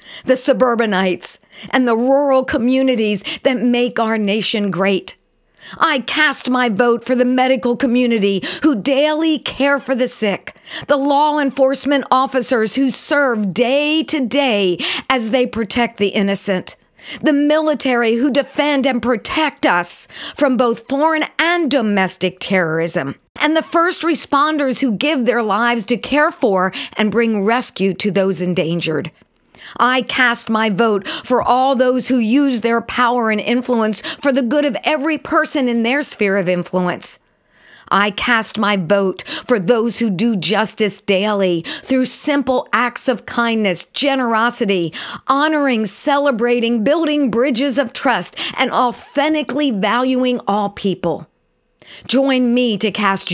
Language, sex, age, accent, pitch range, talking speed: English, female, 50-69, American, 205-275 Hz, 140 wpm